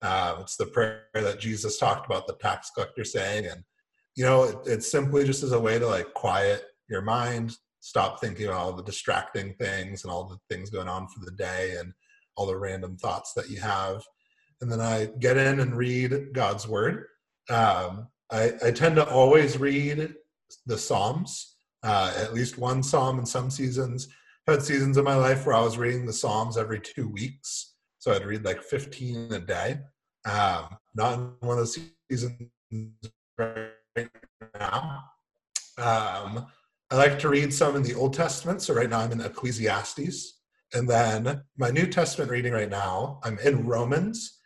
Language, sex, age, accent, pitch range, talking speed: English, male, 30-49, American, 110-140 Hz, 180 wpm